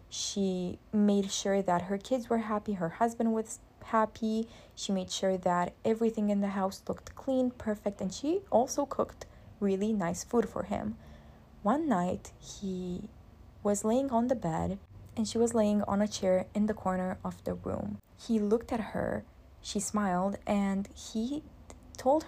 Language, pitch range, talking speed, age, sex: English, 185-220 Hz, 165 wpm, 20-39, female